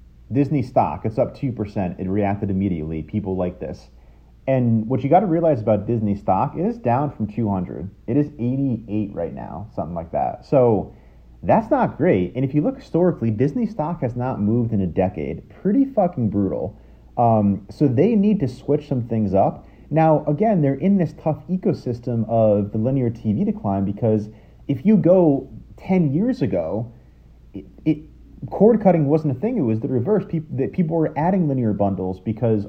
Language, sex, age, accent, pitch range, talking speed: English, male, 30-49, American, 105-155 Hz, 180 wpm